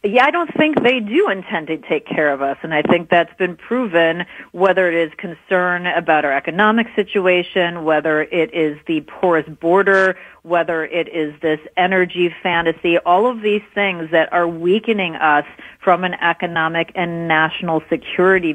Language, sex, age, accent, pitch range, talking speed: English, female, 40-59, American, 165-205 Hz, 170 wpm